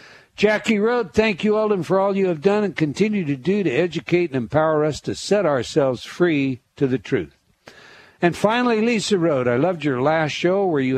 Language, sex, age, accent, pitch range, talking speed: English, male, 60-79, American, 135-185 Hz, 200 wpm